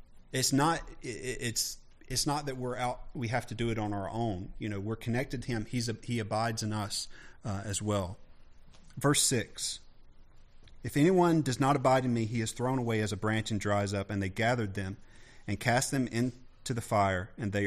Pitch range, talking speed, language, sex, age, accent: 105-125 Hz, 210 wpm, English, male, 40-59, American